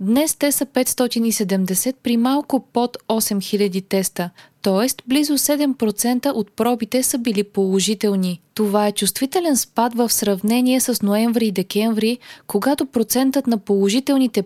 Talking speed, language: 130 wpm, Bulgarian